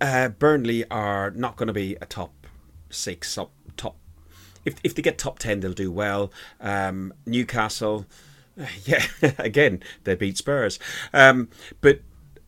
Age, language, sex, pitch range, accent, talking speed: 30-49, English, male, 95-115 Hz, British, 150 wpm